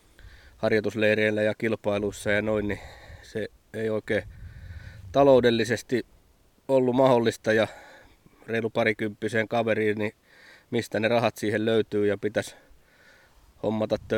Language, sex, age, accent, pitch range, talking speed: Finnish, male, 20-39, native, 105-115 Hz, 105 wpm